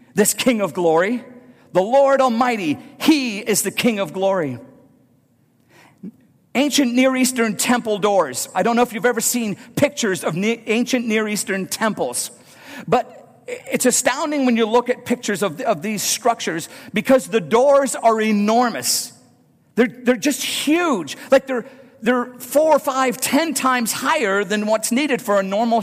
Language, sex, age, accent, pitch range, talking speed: English, male, 50-69, American, 215-265 Hz, 155 wpm